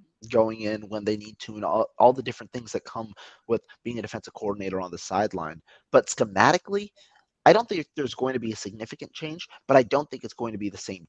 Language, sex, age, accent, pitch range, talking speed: English, male, 30-49, American, 105-125 Hz, 240 wpm